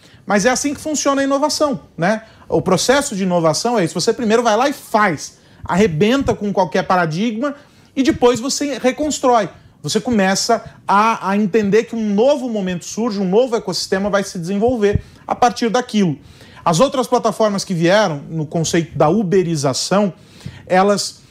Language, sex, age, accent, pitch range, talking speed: Portuguese, male, 40-59, Brazilian, 170-245 Hz, 160 wpm